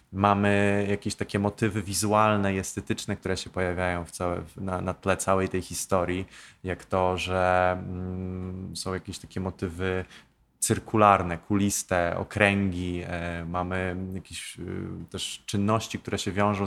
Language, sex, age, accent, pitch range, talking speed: Polish, male, 20-39, native, 95-105 Hz, 135 wpm